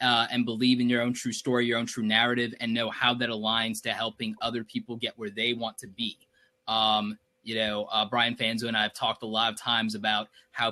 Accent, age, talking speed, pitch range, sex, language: American, 20-39, 240 wpm, 115-130 Hz, male, English